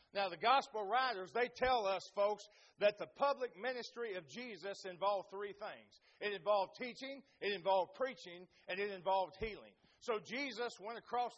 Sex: male